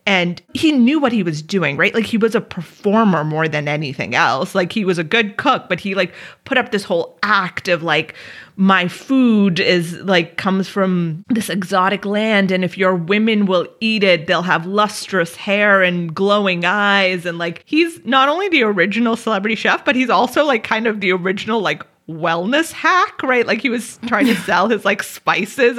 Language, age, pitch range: English, 30-49, 190-275 Hz